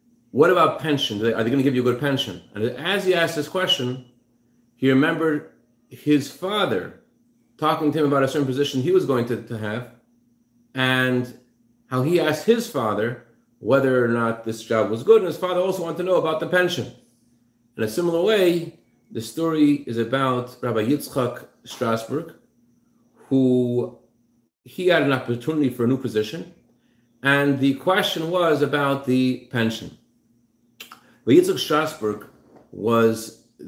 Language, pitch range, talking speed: English, 120-150 Hz, 160 wpm